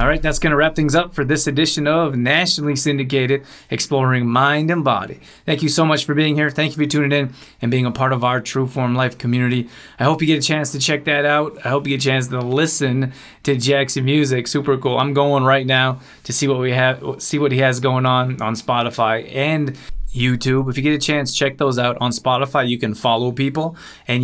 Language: English